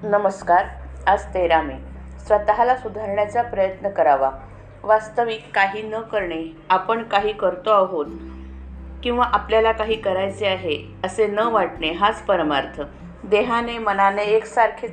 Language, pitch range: Marathi, 180-225 Hz